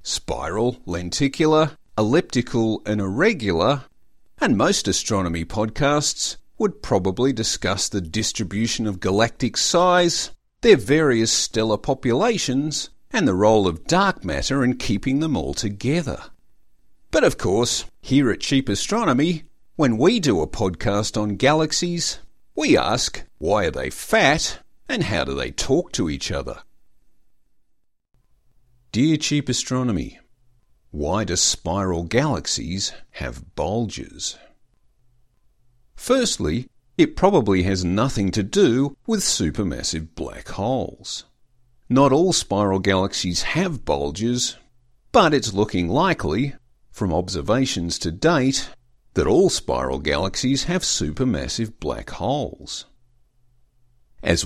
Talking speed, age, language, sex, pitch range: 115 wpm, 50-69, English, male, 100-135 Hz